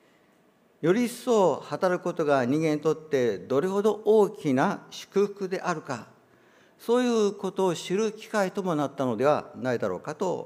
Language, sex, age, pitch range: Japanese, male, 50-69, 125-175 Hz